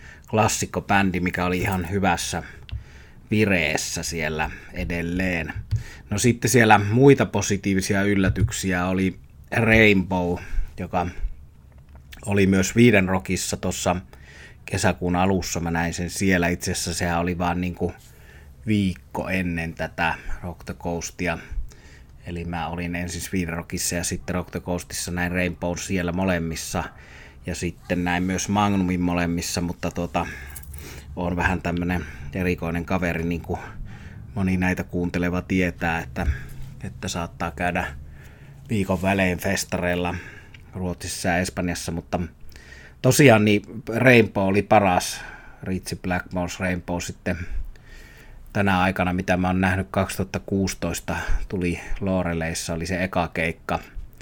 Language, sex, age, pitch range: Finnish, male, 30-49, 85-95 Hz